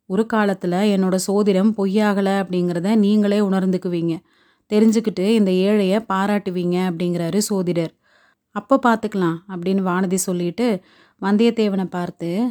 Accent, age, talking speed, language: native, 30-49, 100 wpm, Tamil